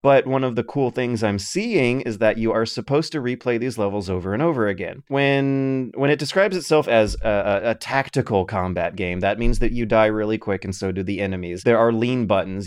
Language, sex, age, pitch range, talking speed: English, male, 30-49, 100-135 Hz, 230 wpm